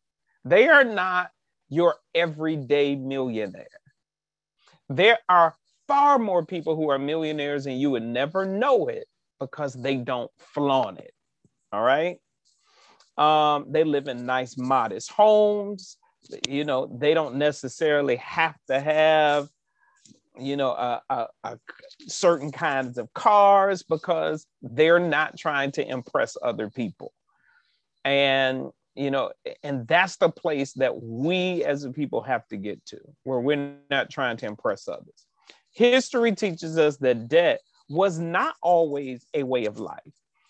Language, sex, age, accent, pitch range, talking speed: English, male, 40-59, American, 140-185 Hz, 135 wpm